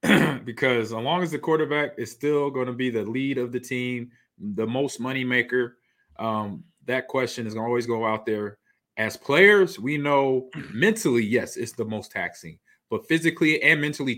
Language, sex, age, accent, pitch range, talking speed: English, male, 30-49, American, 115-155 Hz, 180 wpm